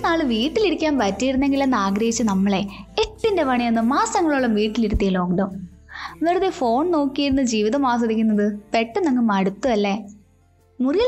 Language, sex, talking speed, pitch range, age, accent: Malayalam, female, 105 wpm, 215-315 Hz, 20-39, native